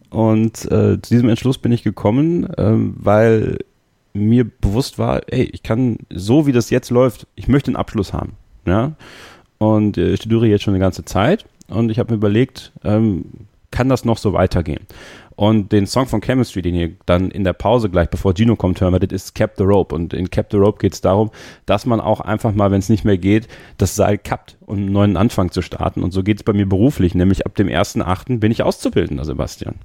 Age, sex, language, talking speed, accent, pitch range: 30-49, male, German, 220 wpm, German, 95-115 Hz